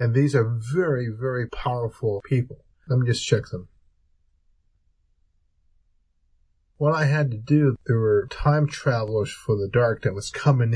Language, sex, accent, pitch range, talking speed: English, male, American, 105-135 Hz, 150 wpm